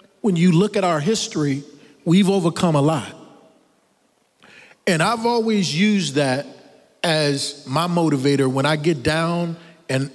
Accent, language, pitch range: American, English, 145-185 Hz